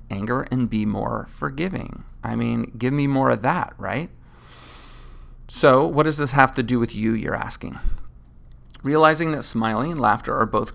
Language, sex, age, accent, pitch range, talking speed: English, male, 30-49, American, 110-125 Hz, 175 wpm